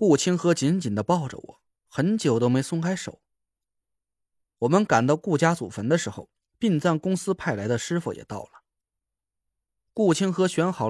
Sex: male